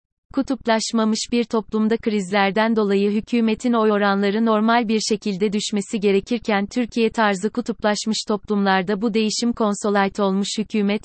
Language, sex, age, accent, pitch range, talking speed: Turkish, female, 30-49, native, 200-225 Hz, 120 wpm